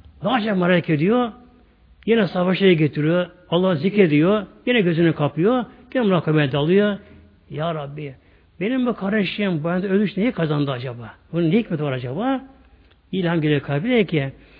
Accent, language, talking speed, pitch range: native, Turkish, 135 wpm, 150-225 Hz